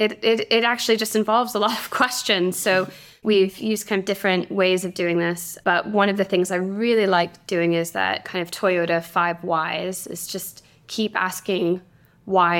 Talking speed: 195 wpm